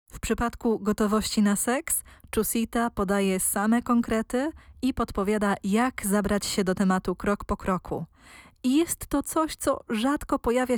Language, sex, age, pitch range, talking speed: Polish, female, 20-39, 185-230 Hz, 145 wpm